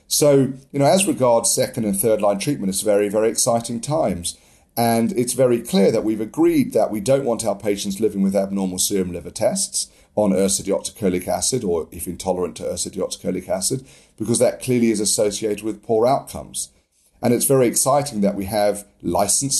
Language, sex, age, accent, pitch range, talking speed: English, male, 40-59, British, 95-115 Hz, 180 wpm